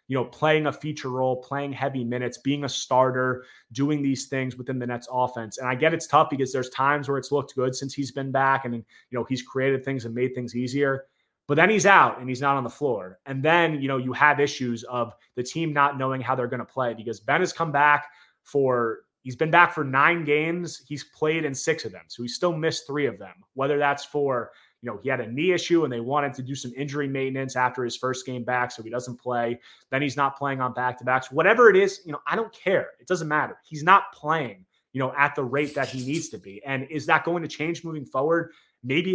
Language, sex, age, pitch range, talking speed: English, male, 20-39, 125-150 Hz, 250 wpm